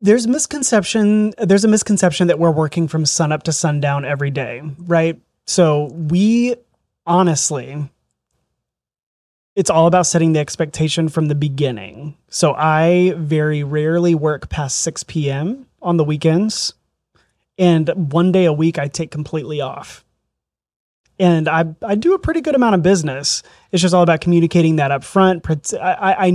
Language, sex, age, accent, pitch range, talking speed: English, male, 30-49, American, 150-180 Hz, 150 wpm